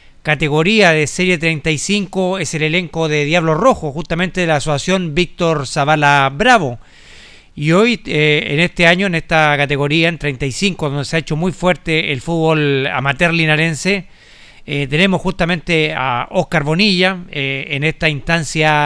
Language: Spanish